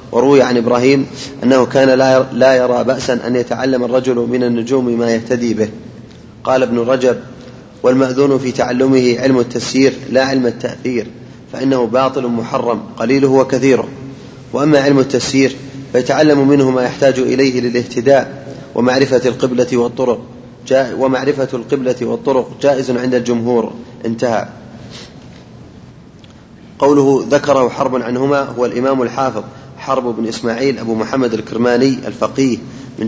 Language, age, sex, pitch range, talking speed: Arabic, 30-49, male, 120-135 Hz, 120 wpm